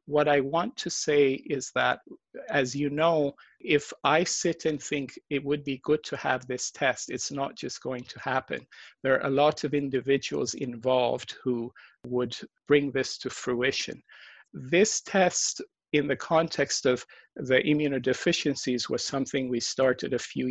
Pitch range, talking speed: 125-150 Hz, 165 wpm